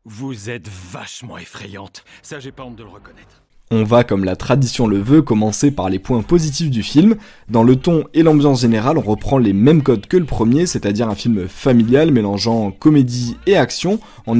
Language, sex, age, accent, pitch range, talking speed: French, male, 20-39, French, 110-145 Hz, 200 wpm